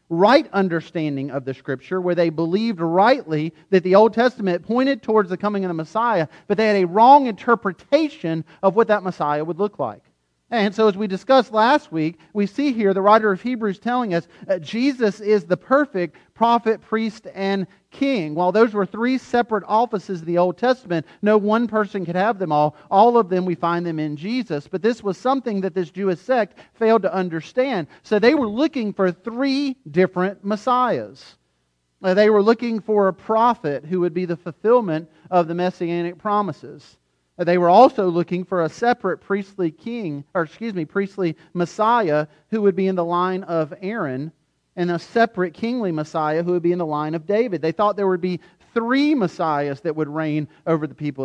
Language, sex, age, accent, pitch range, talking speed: English, male, 40-59, American, 165-225 Hz, 195 wpm